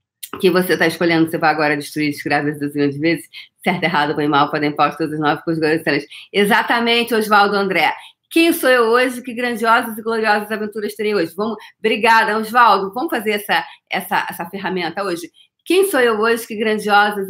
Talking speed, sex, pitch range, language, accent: 190 wpm, female, 170-225 Hz, Portuguese, Brazilian